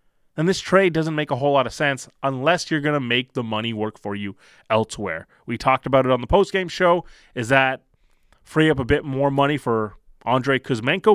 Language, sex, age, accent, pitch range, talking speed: English, male, 20-39, American, 120-160 Hz, 215 wpm